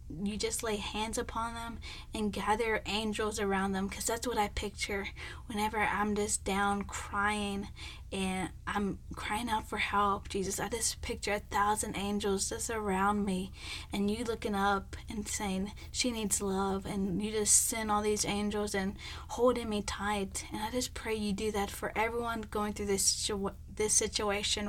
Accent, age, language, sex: American, 10-29, English, female